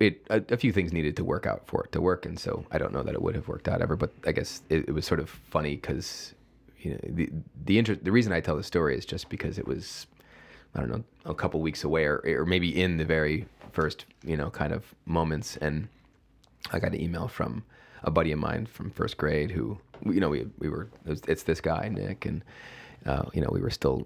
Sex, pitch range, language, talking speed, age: male, 75-105 Hz, English, 255 wpm, 30-49